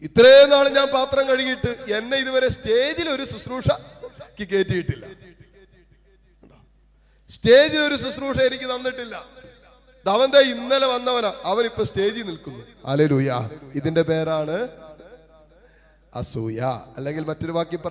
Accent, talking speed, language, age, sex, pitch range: Indian, 60 wpm, English, 30-49, male, 150-210 Hz